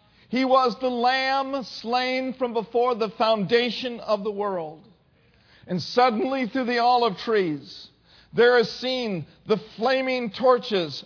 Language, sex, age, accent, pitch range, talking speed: English, male, 50-69, American, 205-255 Hz, 130 wpm